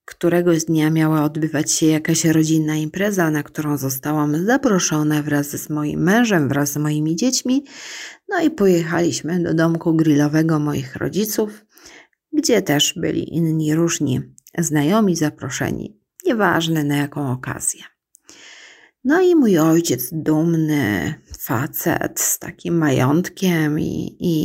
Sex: female